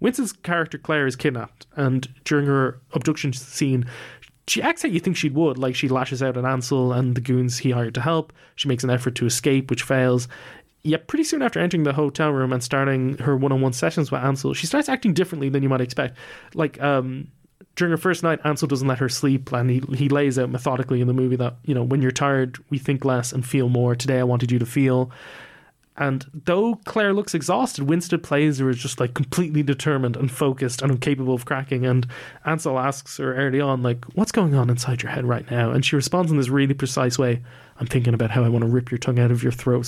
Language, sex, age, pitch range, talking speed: English, male, 20-39, 125-150 Hz, 235 wpm